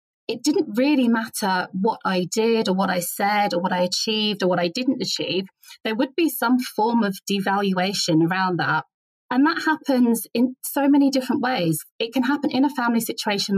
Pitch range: 185-255 Hz